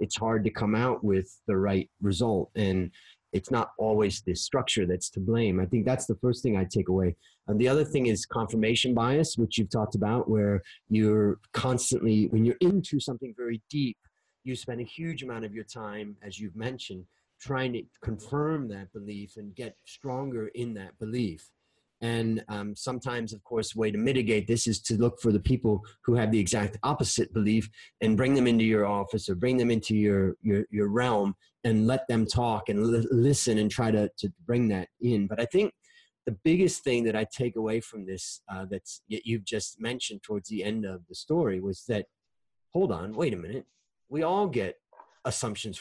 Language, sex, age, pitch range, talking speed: English, male, 30-49, 105-120 Hz, 200 wpm